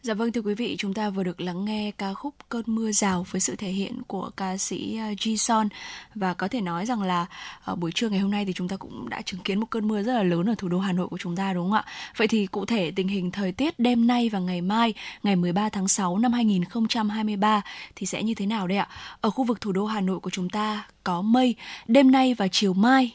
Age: 10-29